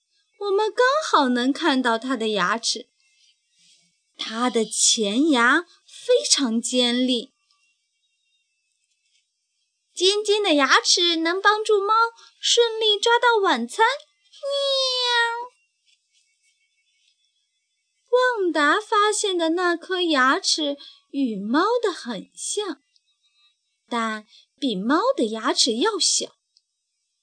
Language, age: Chinese, 20-39